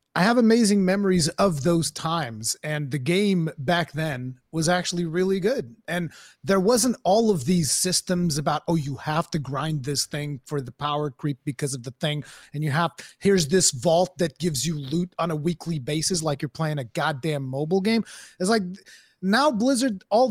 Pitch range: 160-210 Hz